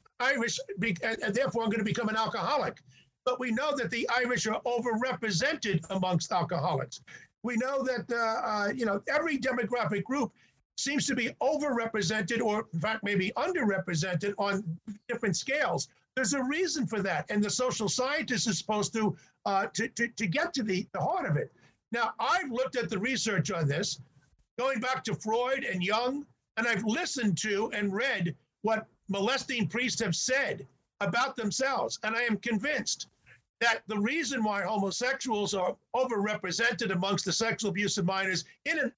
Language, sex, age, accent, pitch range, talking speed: English, male, 50-69, American, 190-245 Hz, 170 wpm